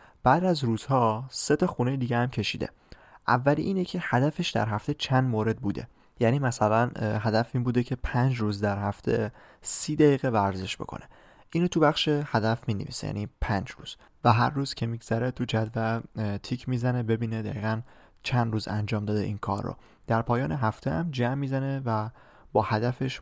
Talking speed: 180 wpm